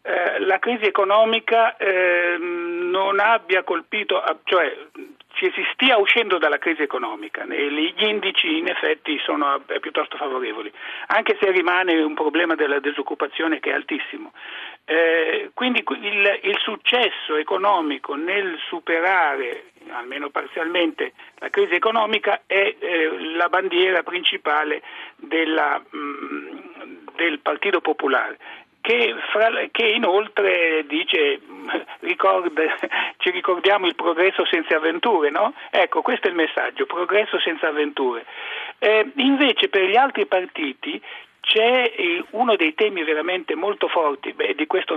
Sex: male